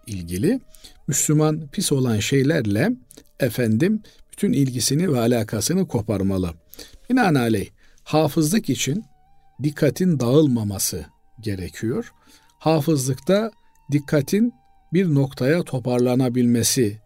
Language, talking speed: Turkish, 75 wpm